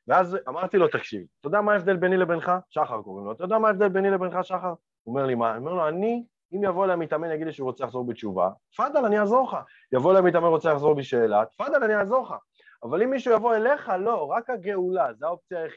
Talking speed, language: 150 wpm, Hebrew